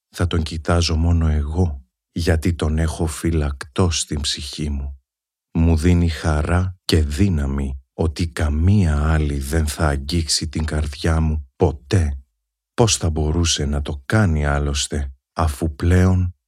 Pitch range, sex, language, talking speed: 75-85 Hz, male, Greek, 130 wpm